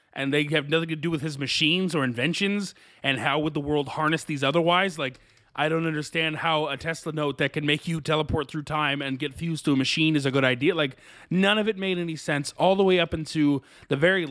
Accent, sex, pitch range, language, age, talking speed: American, male, 145-185 Hz, English, 30-49, 245 wpm